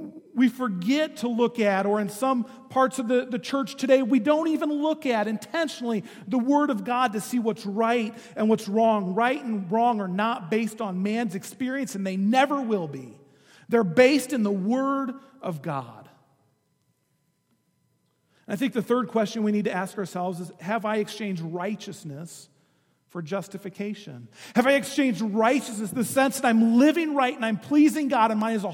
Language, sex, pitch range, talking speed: English, male, 165-235 Hz, 180 wpm